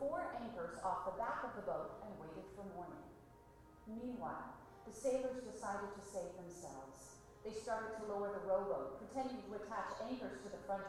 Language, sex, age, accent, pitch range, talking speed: English, female, 40-59, American, 195-265 Hz, 170 wpm